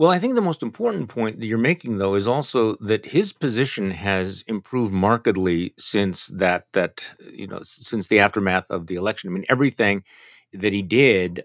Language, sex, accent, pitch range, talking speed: English, male, American, 100-125 Hz, 190 wpm